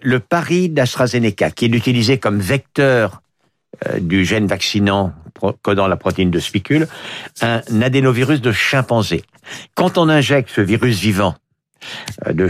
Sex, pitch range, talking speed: male, 100-145 Hz, 130 wpm